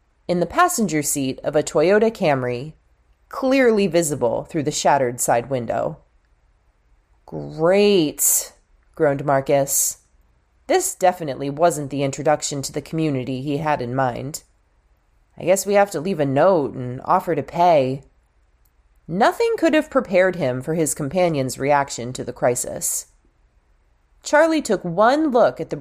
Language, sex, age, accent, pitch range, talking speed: English, female, 30-49, American, 130-200 Hz, 140 wpm